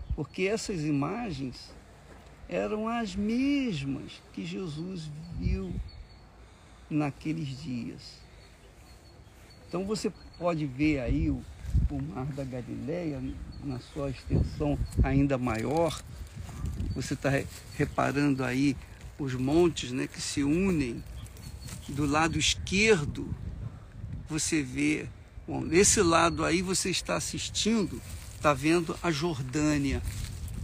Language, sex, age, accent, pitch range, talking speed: Portuguese, male, 50-69, Brazilian, 105-160 Hz, 100 wpm